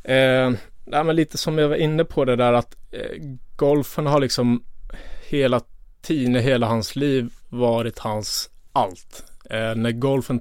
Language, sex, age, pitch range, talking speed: Swedish, male, 20-39, 110-125 Hz, 155 wpm